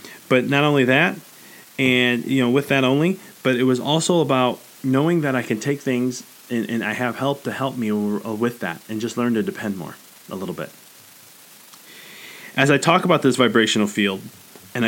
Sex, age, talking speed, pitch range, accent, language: male, 30-49, 195 wpm, 125-180 Hz, American, English